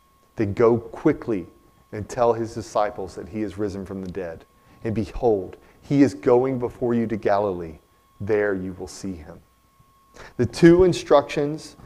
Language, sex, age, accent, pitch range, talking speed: English, male, 40-59, American, 105-150 Hz, 155 wpm